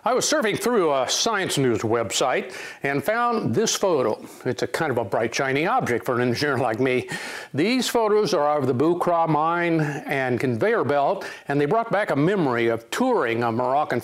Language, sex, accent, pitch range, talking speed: English, male, American, 130-195 Hz, 190 wpm